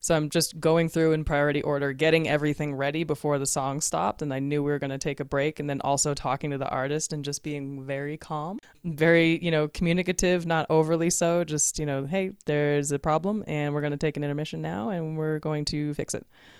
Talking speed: 235 wpm